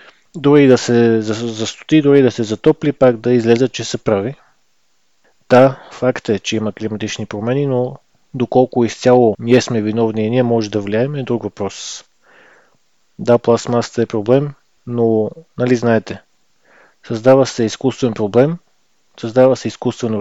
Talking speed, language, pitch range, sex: 145 wpm, Bulgarian, 115-130 Hz, male